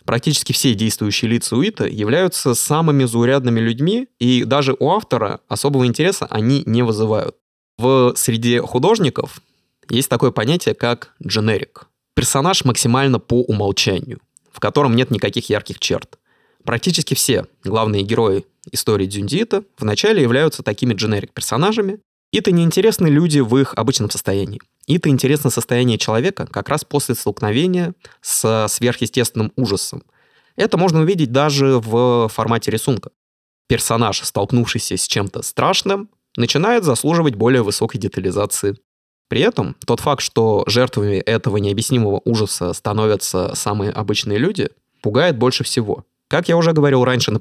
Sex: male